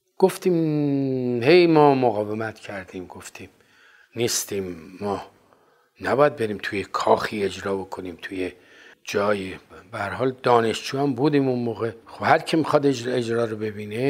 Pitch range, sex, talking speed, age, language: 110-155 Hz, male, 115 wpm, 50-69, Persian